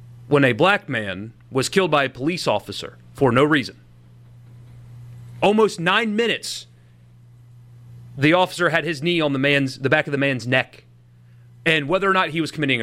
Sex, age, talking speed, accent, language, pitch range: male, 30-49, 175 wpm, American, English, 120-175 Hz